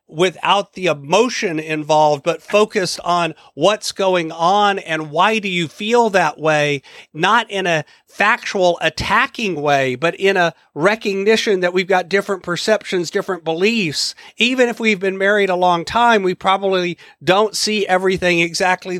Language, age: English, 40-59